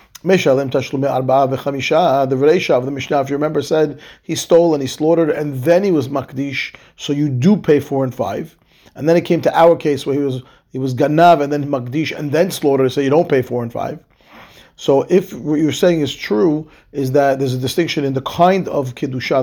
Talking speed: 205 wpm